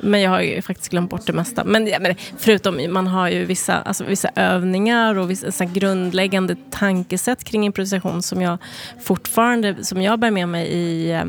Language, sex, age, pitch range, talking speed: Swedish, female, 30-49, 180-215 Hz, 180 wpm